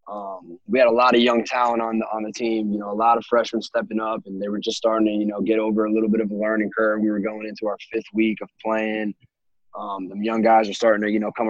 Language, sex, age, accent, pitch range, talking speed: English, male, 20-39, American, 105-125 Hz, 295 wpm